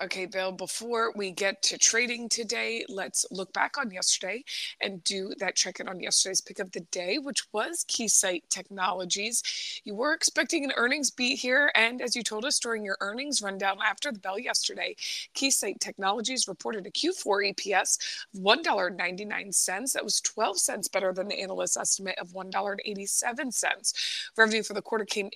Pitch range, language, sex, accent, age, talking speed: 195-245 Hz, English, female, American, 20-39, 170 wpm